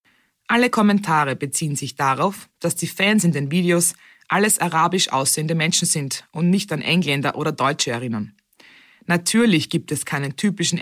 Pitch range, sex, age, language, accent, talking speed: 145-190 Hz, female, 20-39, German, German, 155 wpm